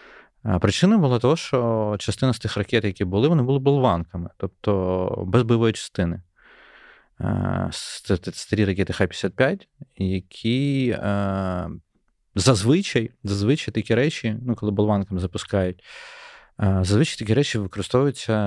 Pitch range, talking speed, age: 90-115 Hz, 110 wpm, 30-49